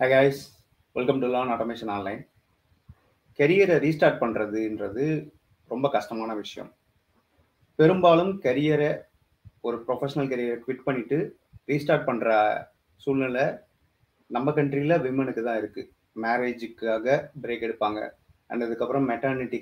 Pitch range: 115-145 Hz